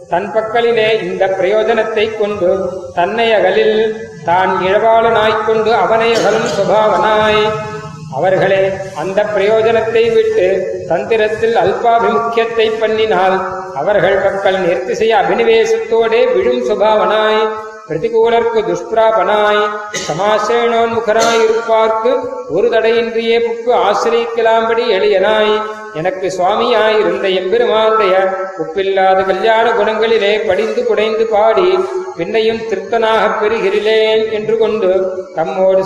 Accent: native